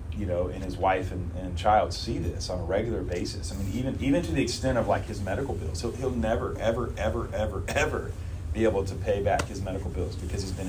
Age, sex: 30-49, male